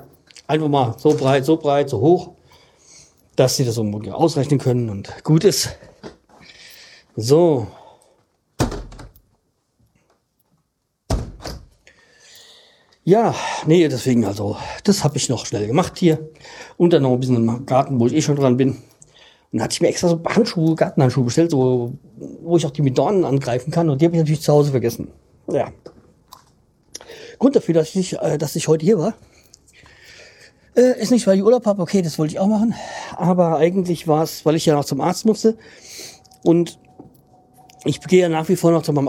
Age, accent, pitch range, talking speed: 40-59, German, 140-170 Hz, 175 wpm